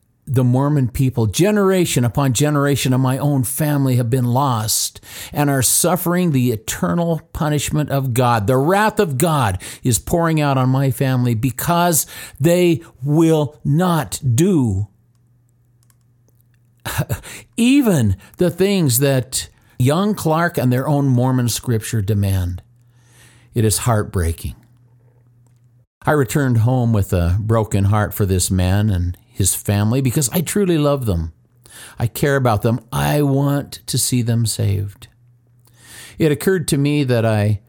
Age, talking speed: 50-69, 135 wpm